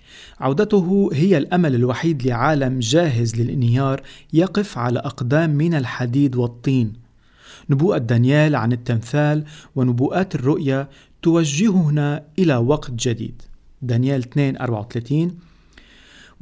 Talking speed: 95 wpm